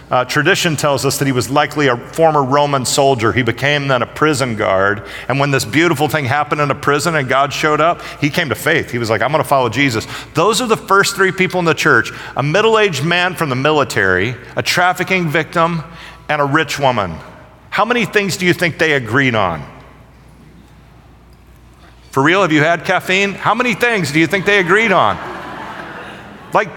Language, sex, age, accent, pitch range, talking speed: English, male, 50-69, American, 145-205 Hz, 200 wpm